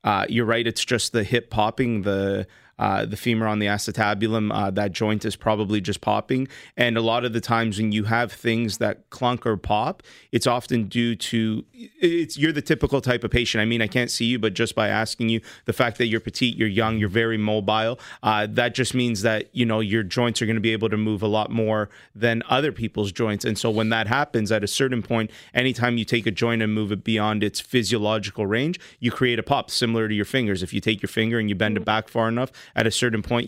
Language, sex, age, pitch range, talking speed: English, male, 30-49, 105-120 Hz, 240 wpm